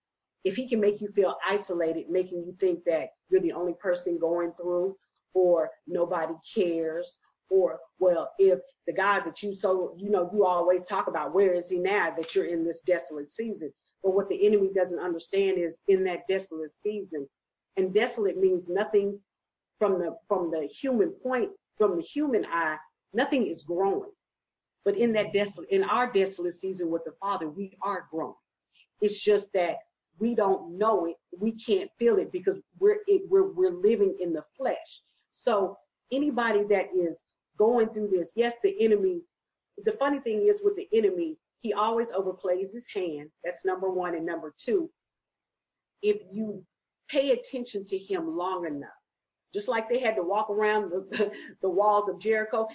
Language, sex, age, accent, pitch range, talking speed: English, female, 40-59, American, 175-230 Hz, 175 wpm